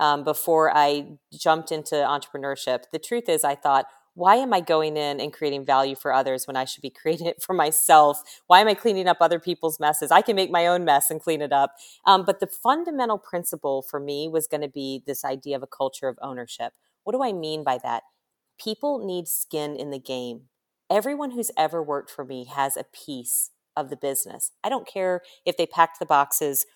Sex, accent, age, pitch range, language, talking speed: female, American, 40-59, 140-170 Hz, English, 215 wpm